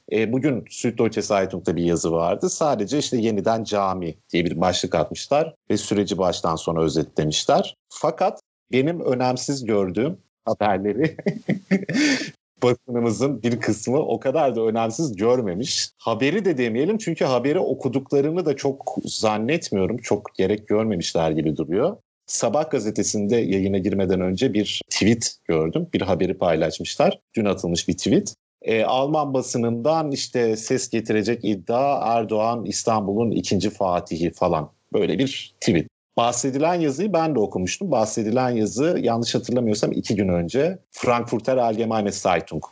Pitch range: 95-130 Hz